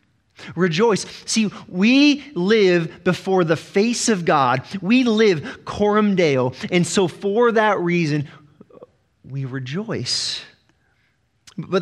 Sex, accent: male, American